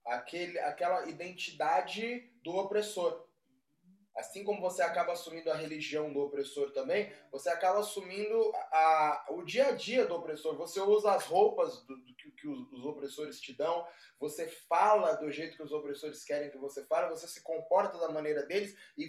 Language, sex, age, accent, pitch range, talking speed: Portuguese, male, 20-39, Brazilian, 150-200 Hz, 175 wpm